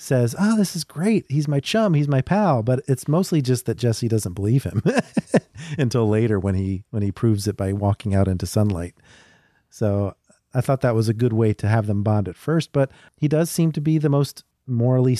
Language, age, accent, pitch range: English, 40-59, American, 105-130 Hz